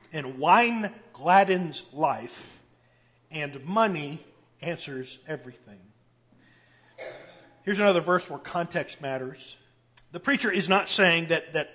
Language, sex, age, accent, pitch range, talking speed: English, male, 40-59, American, 150-195 Hz, 105 wpm